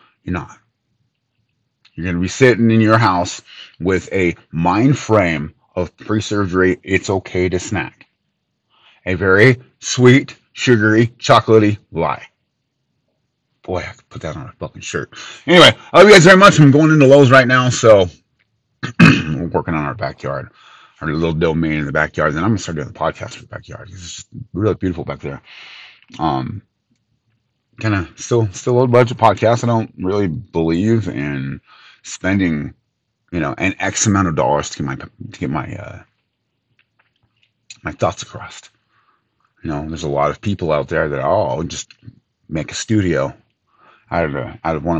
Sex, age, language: male, 30-49, English